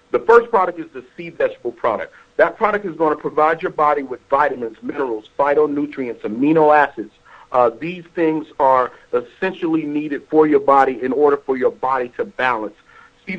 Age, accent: 50-69, American